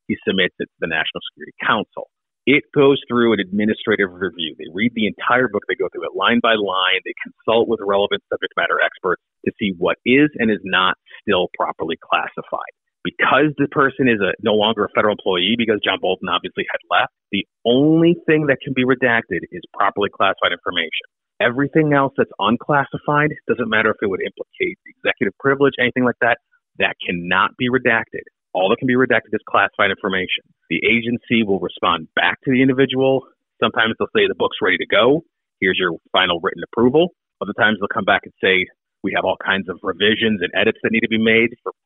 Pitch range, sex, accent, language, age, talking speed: 120-155 Hz, male, American, English, 30-49, 200 wpm